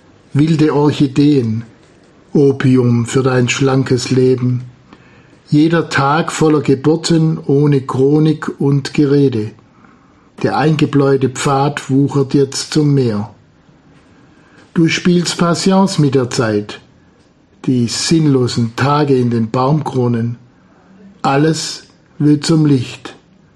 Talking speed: 95 wpm